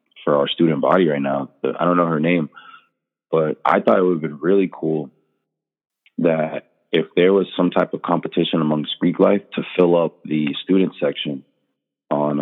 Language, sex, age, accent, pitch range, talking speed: English, male, 30-49, American, 80-95 Hz, 185 wpm